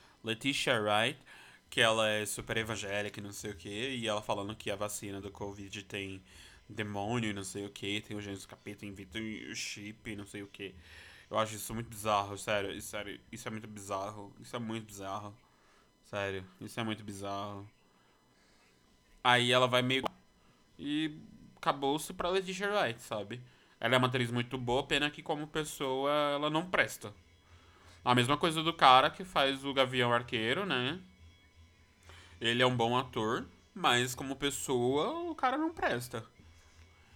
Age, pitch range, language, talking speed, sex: 20-39, 100-130 Hz, Portuguese, 175 wpm, male